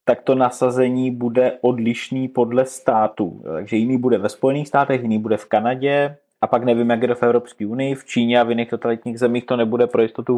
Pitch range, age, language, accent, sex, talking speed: 110-125 Hz, 20-39, Czech, native, male, 210 wpm